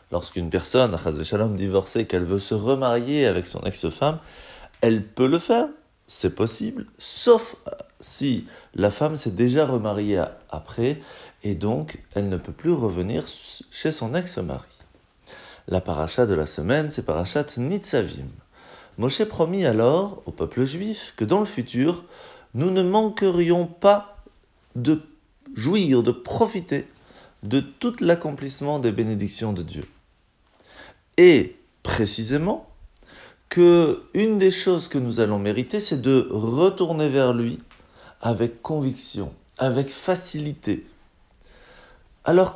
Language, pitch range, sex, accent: French, 105-175 Hz, male, French